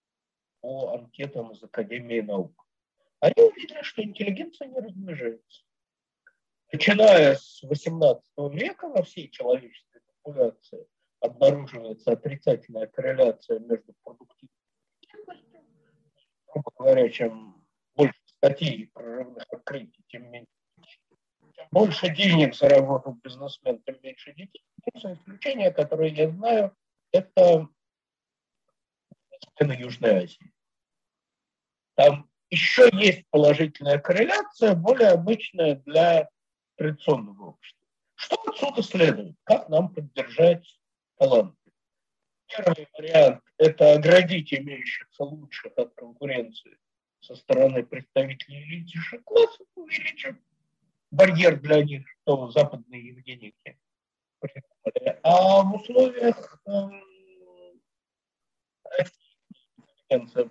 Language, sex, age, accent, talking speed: Russian, male, 50-69, native, 90 wpm